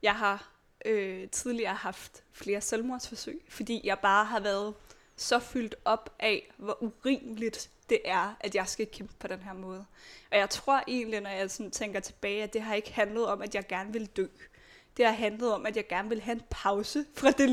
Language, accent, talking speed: Danish, native, 200 wpm